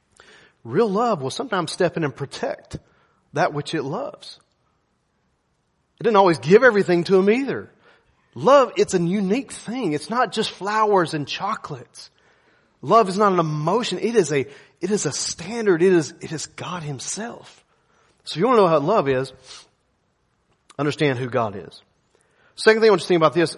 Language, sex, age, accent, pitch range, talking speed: English, male, 30-49, American, 150-200 Hz, 180 wpm